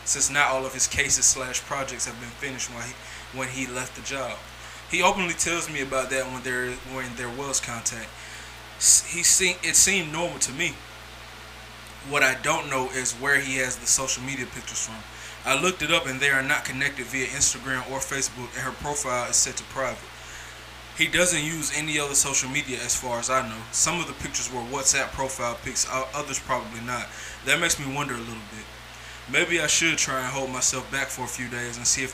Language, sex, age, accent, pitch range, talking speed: English, male, 20-39, American, 125-140 Hz, 205 wpm